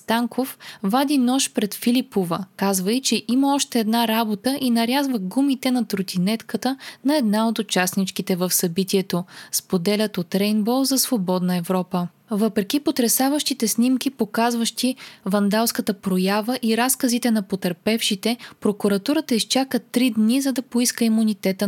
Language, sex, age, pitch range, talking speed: Bulgarian, female, 20-39, 195-245 Hz, 125 wpm